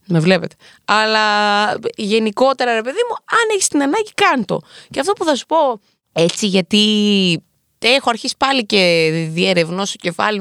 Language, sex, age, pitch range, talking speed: Greek, female, 20-39, 180-260 Hz, 145 wpm